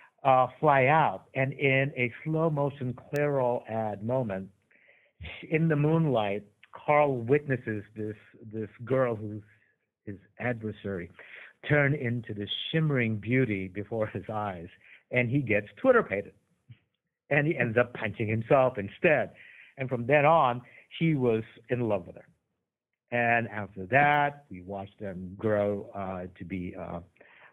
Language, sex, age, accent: English, male, 60-79, American